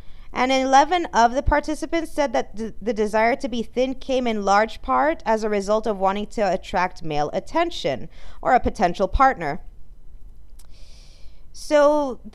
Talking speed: 150 wpm